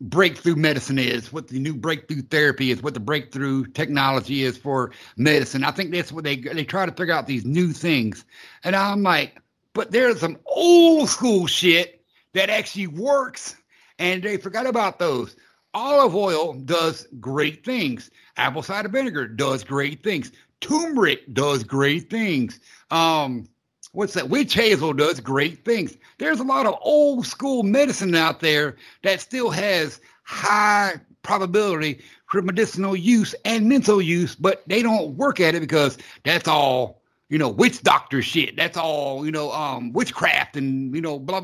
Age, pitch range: 60-79, 145-215 Hz